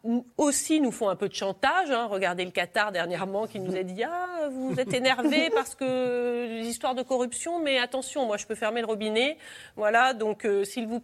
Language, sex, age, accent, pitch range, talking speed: French, female, 30-49, French, 190-250 Hz, 210 wpm